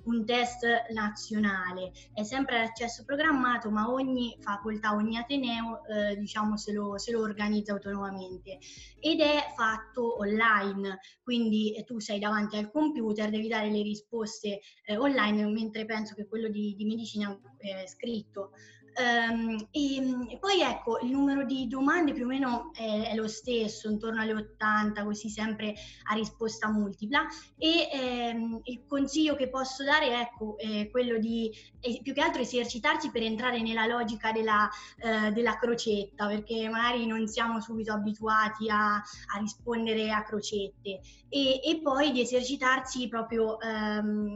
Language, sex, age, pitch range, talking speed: Italian, female, 20-39, 210-245 Hz, 155 wpm